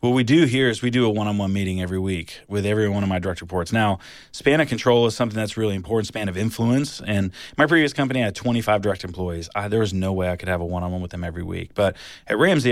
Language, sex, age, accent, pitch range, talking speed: English, male, 30-49, American, 95-120 Hz, 260 wpm